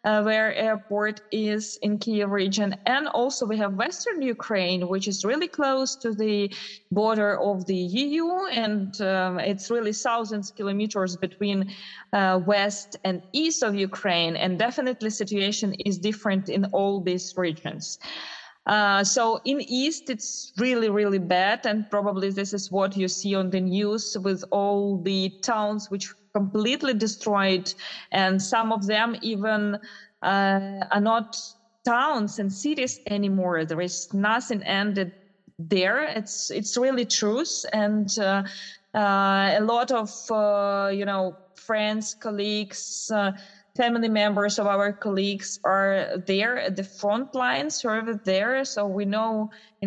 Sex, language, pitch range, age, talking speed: female, German, 195-225 Hz, 20-39, 150 wpm